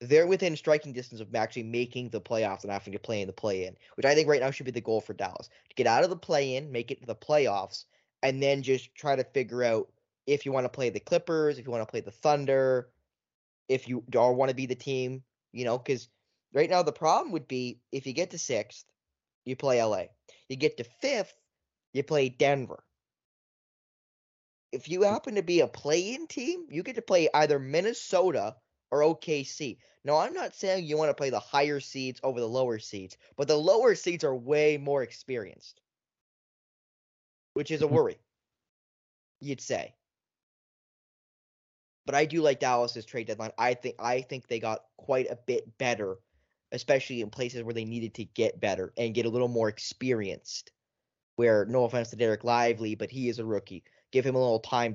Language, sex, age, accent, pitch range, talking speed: English, male, 10-29, American, 115-145 Hz, 200 wpm